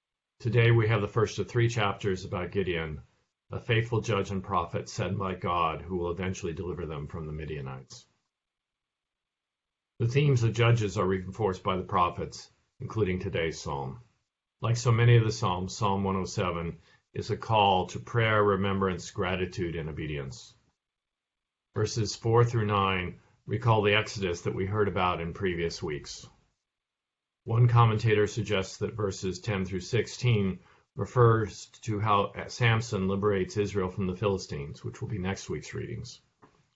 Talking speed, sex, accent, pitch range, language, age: 150 wpm, male, American, 95-115 Hz, English, 50-69